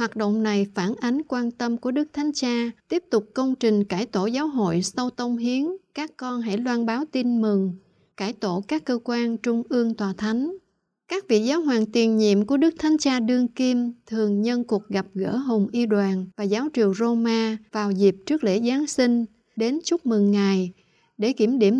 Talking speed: 205 wpm